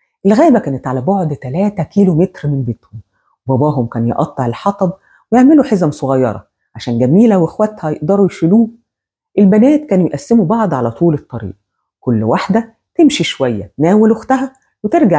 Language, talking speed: Arabic, 140 wpm